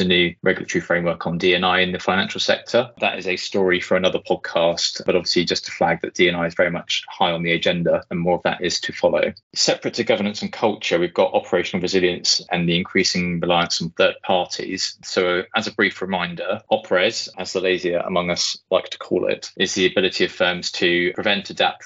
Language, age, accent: English, 20-39, British